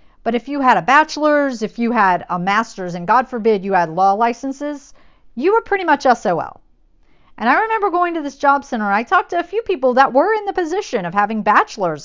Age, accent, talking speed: 50-69, American, 225 wpm